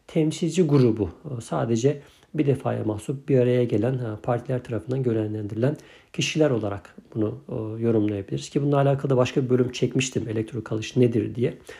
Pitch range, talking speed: 115-140 Hz, 140 wpm